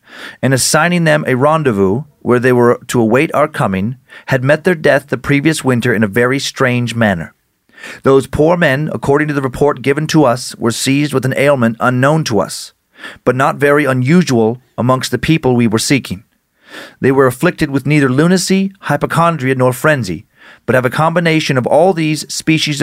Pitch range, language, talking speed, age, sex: 120-155 Hz, English, 180 wpm, 40-59, male